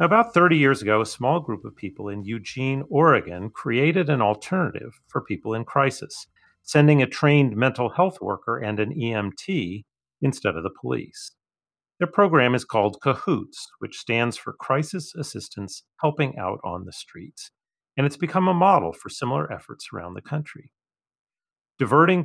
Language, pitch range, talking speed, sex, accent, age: English, 110-155 Hz, 160 wpm, male, American, 40-59